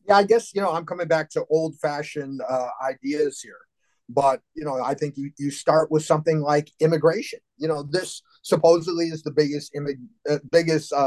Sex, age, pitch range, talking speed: male, 30-49, 140-175 Hz, 185 wpm